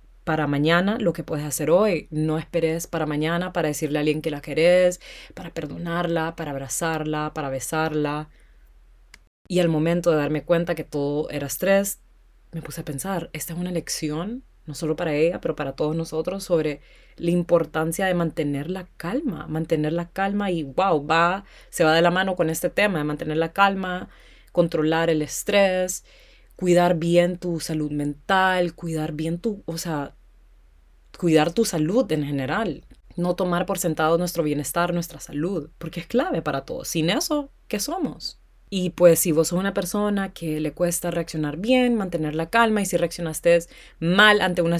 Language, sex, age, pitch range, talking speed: Spanish, female, 30-49, 155-180 Hz, 175 wpm